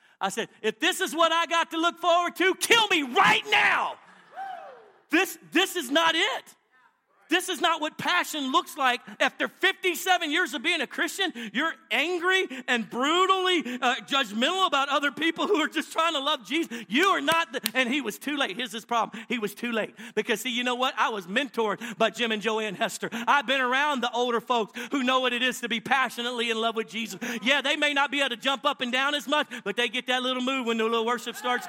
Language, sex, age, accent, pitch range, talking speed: English, male, 40-59, American, 230-310 Hz, 230 wpm